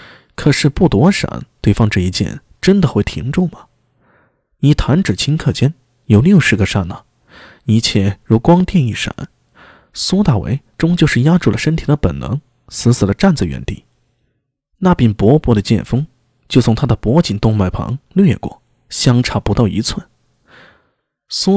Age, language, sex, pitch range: 20-39, Chinese, male, 105-145 Hz